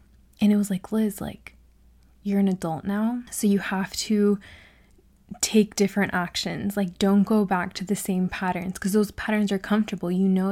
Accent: American